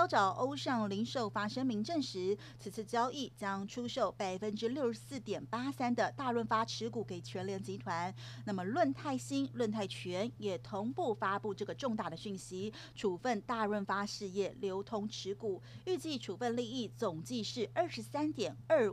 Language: Chinese